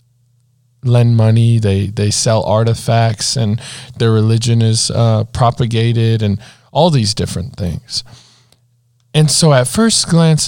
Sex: male